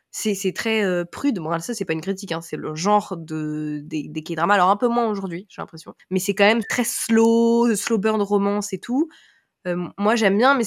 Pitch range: 185-240 Hz